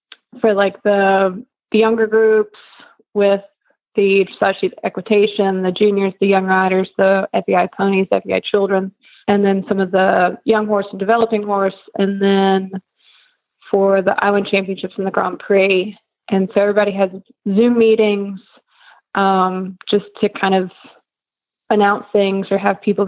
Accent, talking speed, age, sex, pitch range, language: American, 145 wpm, 20-39, female, 195-210 Hz, English